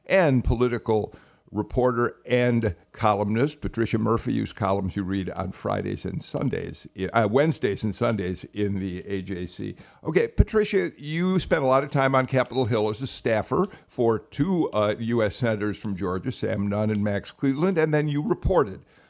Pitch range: 105-135 Hz